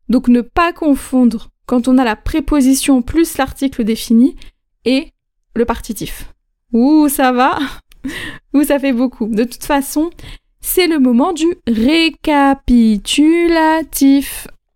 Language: French